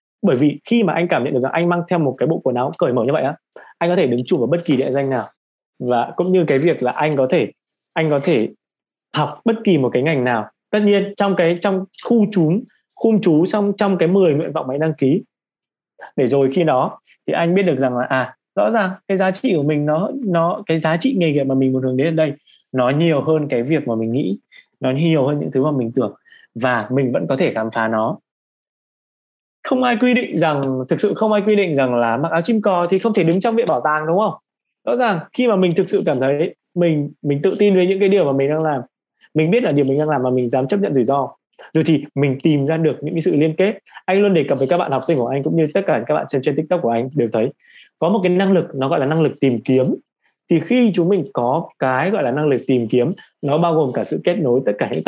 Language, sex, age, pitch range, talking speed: Vietnamese, male, 20-39, 130-185 Hz, 280 wpm